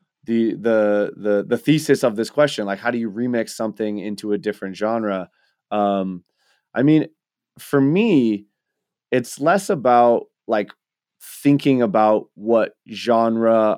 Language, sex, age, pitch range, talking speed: English, male, 20-39, 105-130 Hz, 130 wpm